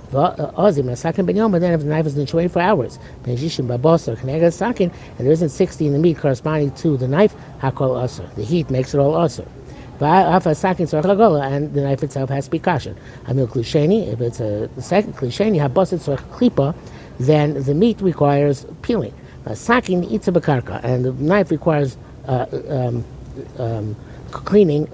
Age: 60-79